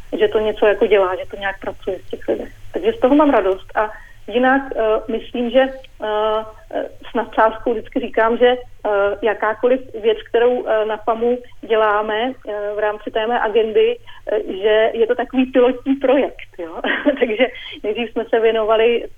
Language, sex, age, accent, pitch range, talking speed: Czech, female, 30-49, native, 205-245 Hz, 170 wpm